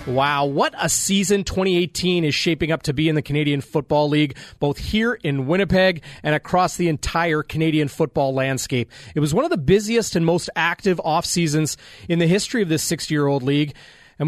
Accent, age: American, 30-49